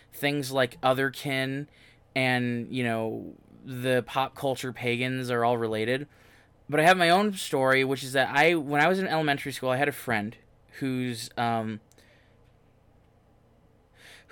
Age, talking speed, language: 20-39, 150 wpm, English